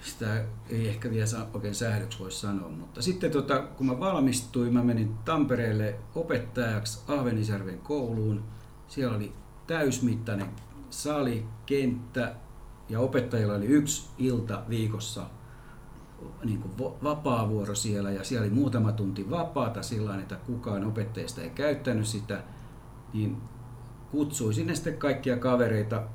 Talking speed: 115 wpm